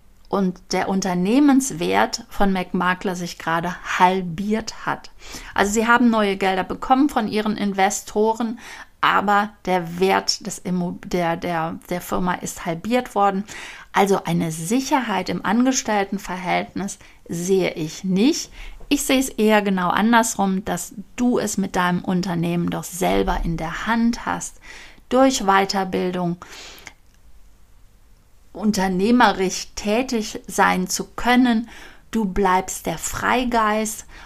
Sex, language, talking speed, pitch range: female, German, 115 wpm, 180-230 Hz